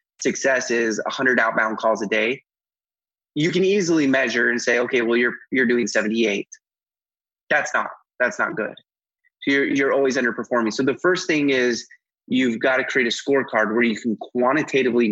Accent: American